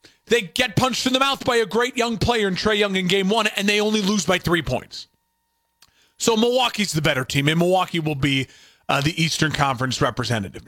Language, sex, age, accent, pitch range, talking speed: English, male, 30-49, American, 150-195 Hz, 215 wpm